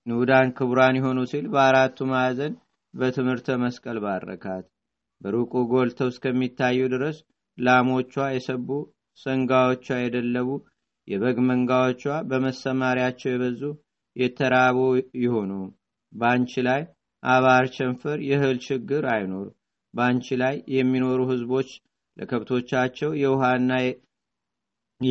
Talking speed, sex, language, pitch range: 85 wpm, male, Amharic, 125-130 Hz